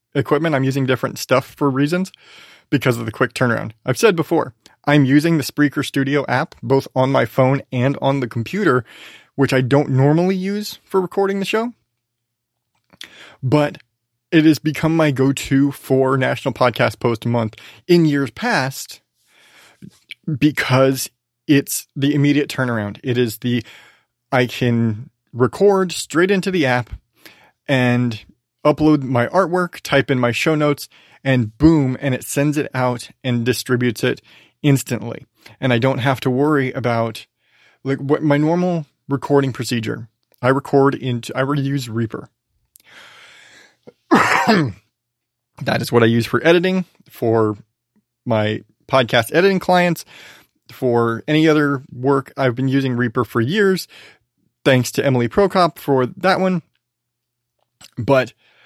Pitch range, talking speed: 120-150 Hz, 140 wpm